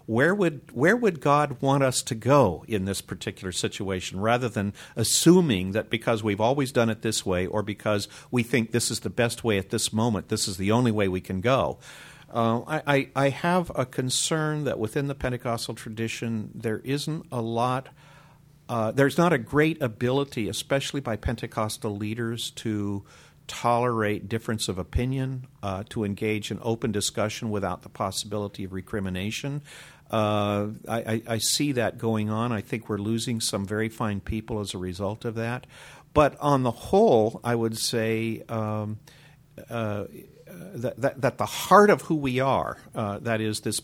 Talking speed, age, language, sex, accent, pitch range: 175 wpm, 50-69, English, male, American, 105-135 Hz